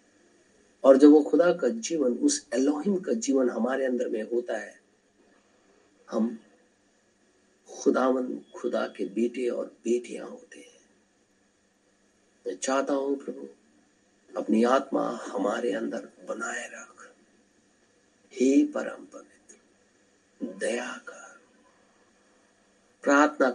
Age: 50-69